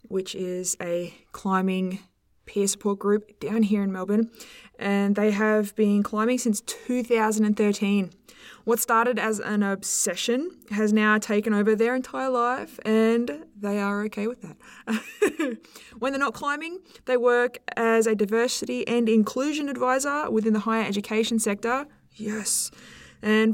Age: 20-39